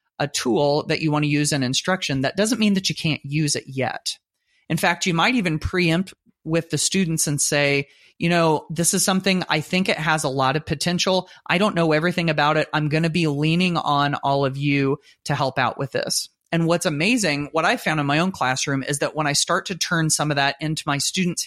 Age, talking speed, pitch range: 30-49, 240 wpm, 140-165 Hz